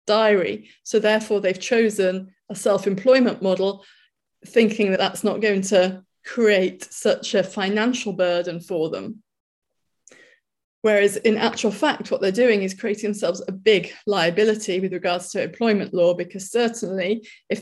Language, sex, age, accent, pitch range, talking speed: English, female, 30-49, British, 185-215 Hz, 145 wpm